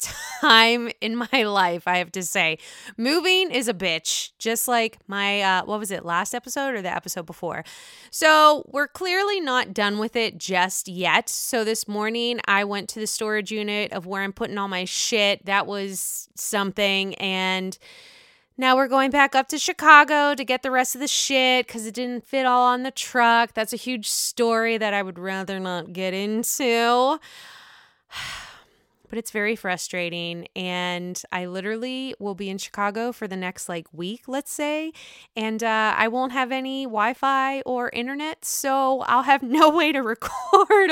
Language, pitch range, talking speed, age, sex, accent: English, 200-270 Hz, 175 wpm, 20-39, female, American